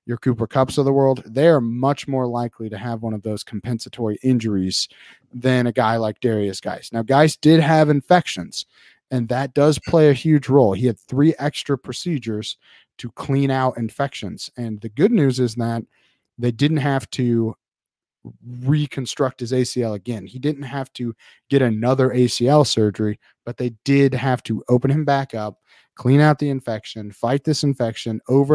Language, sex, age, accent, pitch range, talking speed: English, male, 30-49, American, 115-140 Hz, 175 wpm